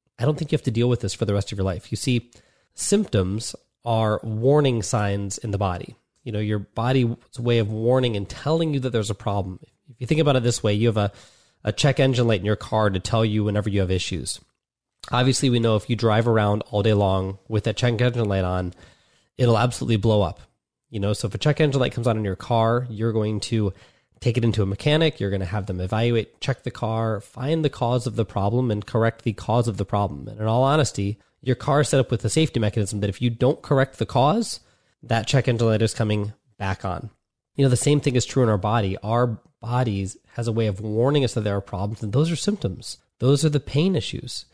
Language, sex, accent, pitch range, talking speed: English, male, American, 105-130 Hz, 250 wpm